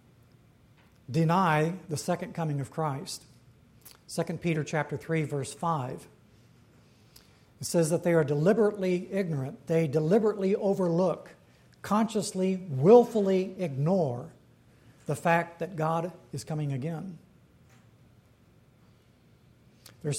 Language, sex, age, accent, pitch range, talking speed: English, male, 60-79, American, 140-180 Hz, 100 wpm